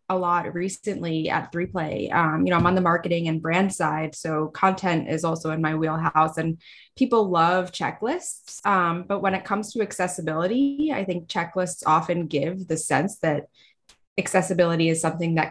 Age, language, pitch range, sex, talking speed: 20-39, English, 160-190 Hz, female, 170 wpm